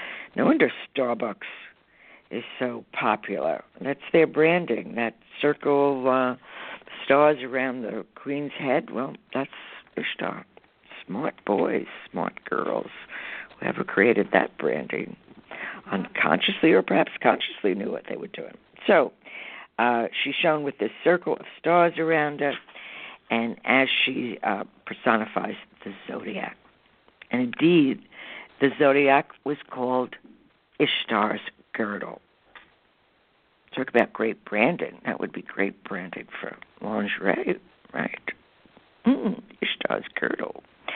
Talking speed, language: 115 wpm, English